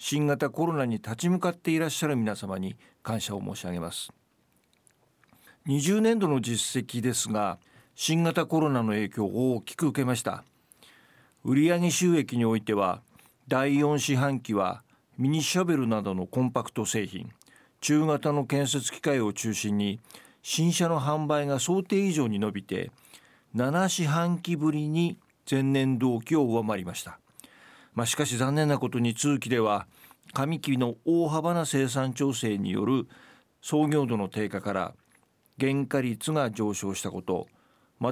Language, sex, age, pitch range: Japanese, male, 50-69, 110-155 Hz